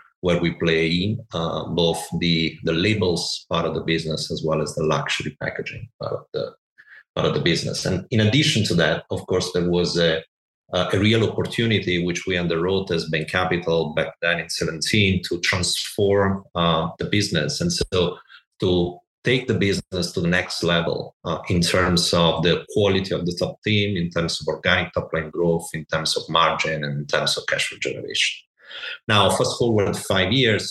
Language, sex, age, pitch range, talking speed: English, male, 30-49, 85-95 Hz, 190 wpm